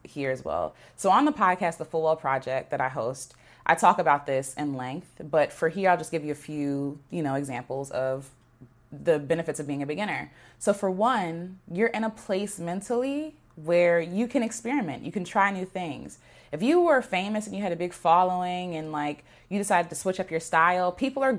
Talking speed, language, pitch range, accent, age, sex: 215 wpm, English, 155-200 Hz, American, 20-39, female